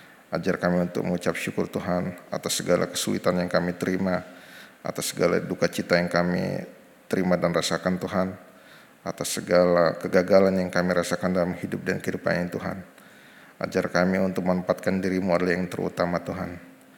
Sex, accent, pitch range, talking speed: male, native, 90-95 Hz, 150 wpm